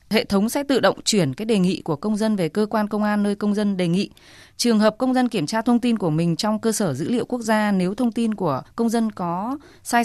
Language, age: Vietnamese, 20-39